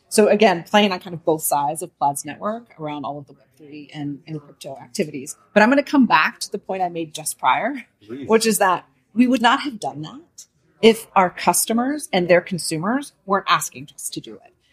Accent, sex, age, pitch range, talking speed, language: American, female, 40-59, 150-205 Hz, 215 wpm, English